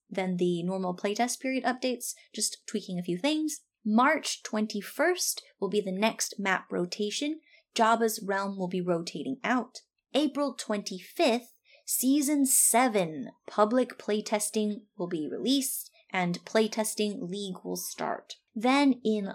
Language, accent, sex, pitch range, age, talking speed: English, American, female, 190-260 Hz, 20-39, 125 wpm